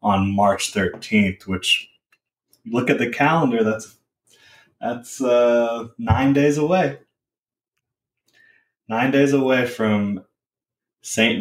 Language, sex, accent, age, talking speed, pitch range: English, male, American, 20-39, 100 wpm, 100-115 Hz